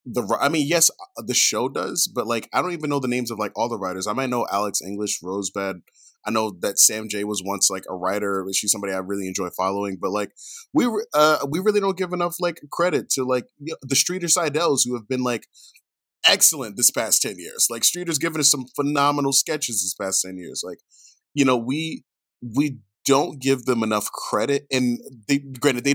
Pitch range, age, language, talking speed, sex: 105-155 Hz, 20-39, English, 215 wpm, male